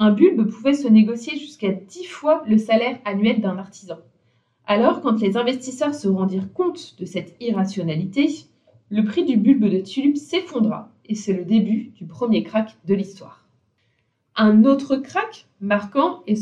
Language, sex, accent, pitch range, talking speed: French, female, French, 190-240 Hz, 160 wpm